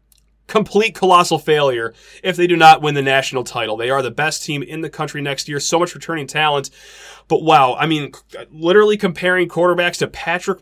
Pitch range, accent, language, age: 135-180 Hz, American, English, 30-49